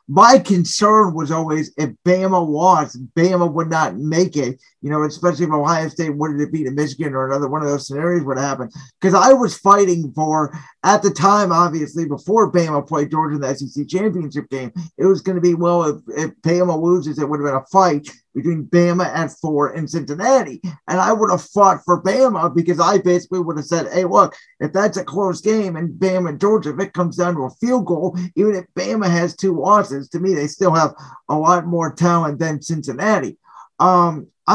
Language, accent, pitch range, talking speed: English, American, 150-185 Hz, 210 wpm